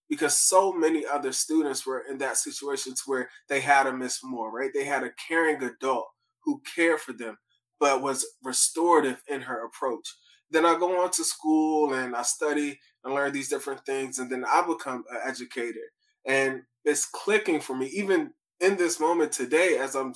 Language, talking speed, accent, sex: English, 190 wpm, American, male